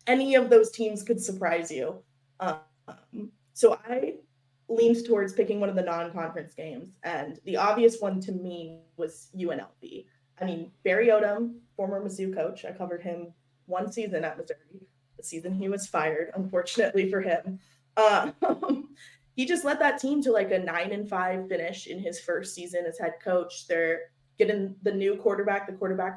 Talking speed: 170 wpm